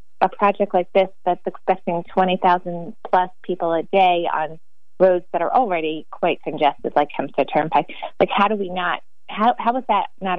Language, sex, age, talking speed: English, female, 30-49, 180 wpm